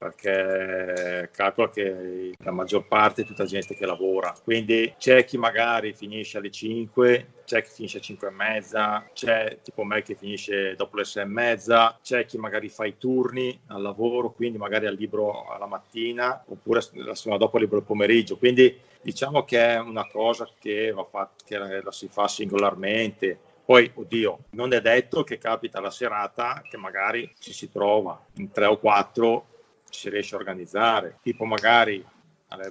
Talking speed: 180 wpm